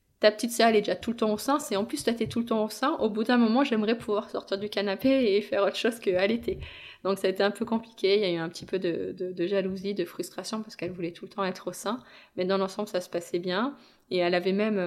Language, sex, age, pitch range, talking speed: French, female, 20-39, 180-215 Hz, 305 wpm